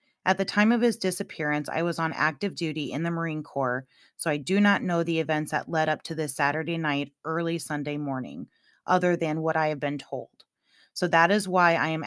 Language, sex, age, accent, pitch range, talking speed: English, female, 30-49, American, 150-180 Hz, 225 wpm